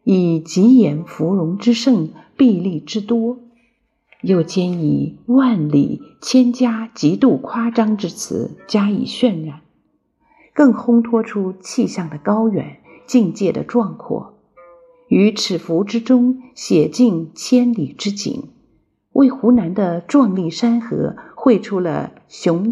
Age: 50-69